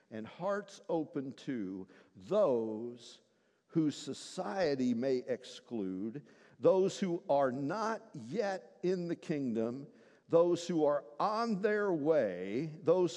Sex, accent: male, American